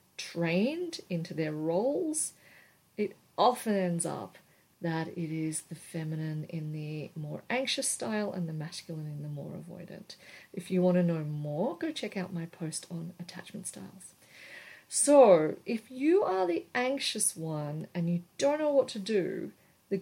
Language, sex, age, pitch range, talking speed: English, female, 40-59, 170-230 Hz, 160 wpm